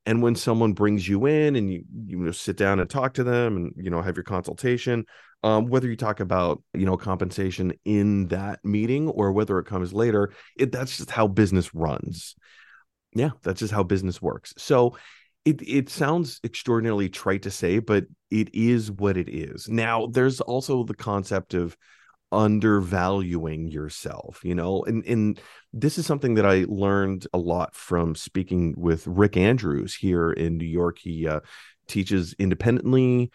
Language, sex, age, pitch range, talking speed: English, male, 30-49, 90-120 Hz, 175 wpm